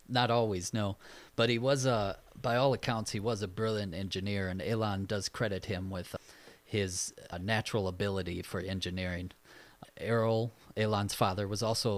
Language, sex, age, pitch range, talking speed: English, male, 30-49, 95-110 Hz, 155 wpm